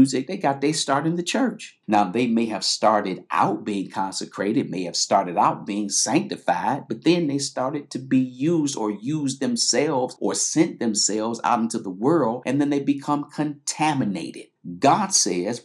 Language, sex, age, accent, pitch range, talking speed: English, male, 50-69, American, 100-145 Hz, 175 wpm